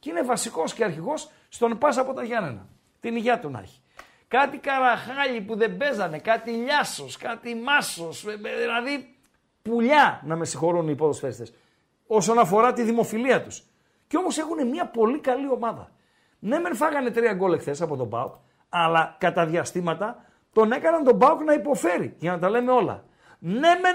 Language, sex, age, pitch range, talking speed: Greek, male, 50-69, 175-255 Hz, 170 wpm